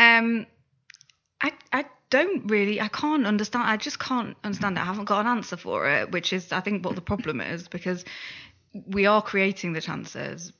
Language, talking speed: English, 195 wpm